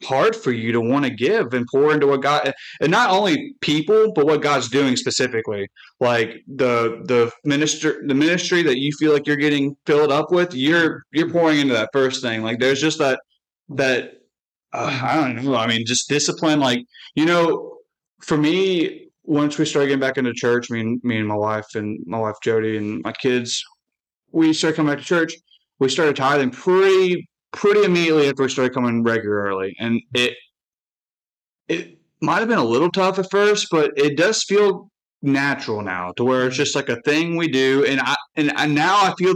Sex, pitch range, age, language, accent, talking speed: male, 125-160 Hz, 20-39, English, American, 200 wpm